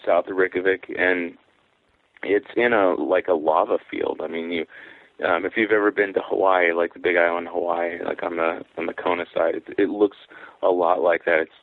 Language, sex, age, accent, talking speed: English, male, 30-49, American, 210 wpm